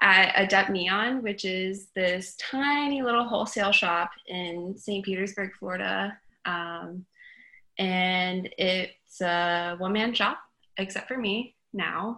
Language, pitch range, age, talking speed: English, 175-205 Hz, 20-39, 120 wpm